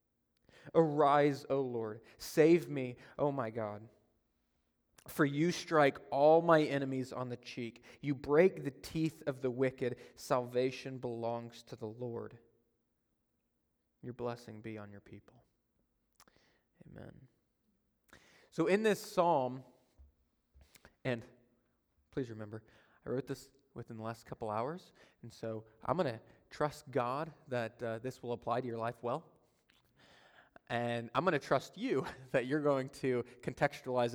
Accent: American